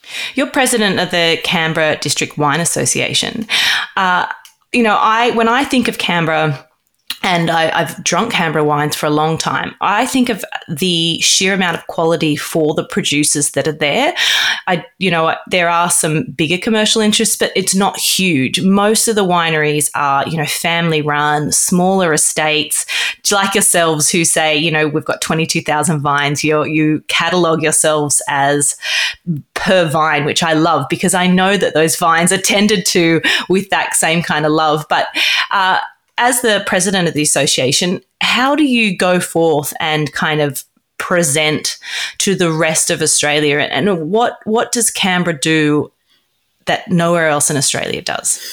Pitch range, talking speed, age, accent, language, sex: 155-190 Hz, 165 wpm, 20-39, Australian, English, female